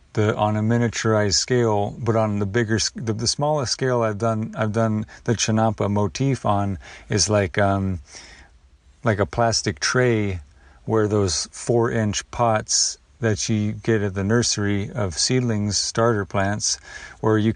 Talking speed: 150 wpm